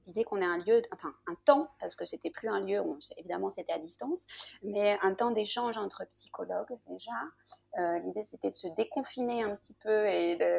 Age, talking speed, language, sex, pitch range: 30-49, 215 wpm, French, female, 185-235 Hz